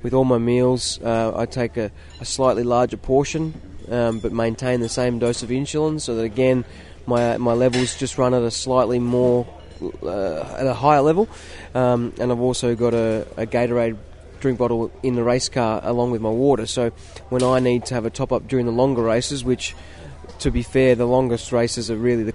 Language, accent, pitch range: English, Australian, 115-130 Hz